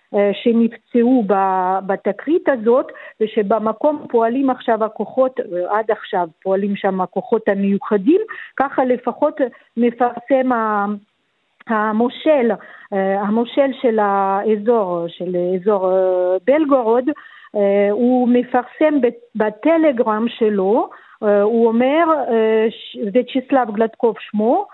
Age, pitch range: 50-69, 210-275 Hz